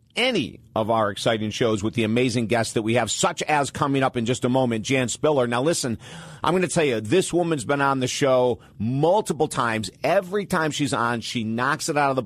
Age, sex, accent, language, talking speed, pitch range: 50-69, male, American, English, 230 wpm, 120-150 Hz